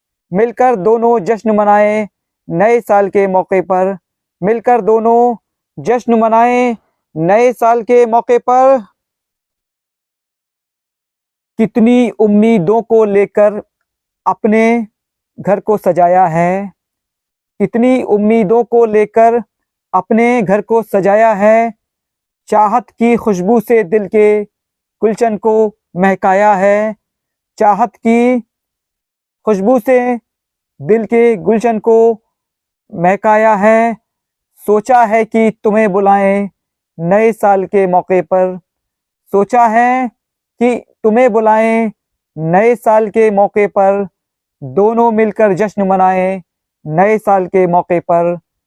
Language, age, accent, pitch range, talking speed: Hindi, 50-69, native, 195-230 Hz, 105 wpm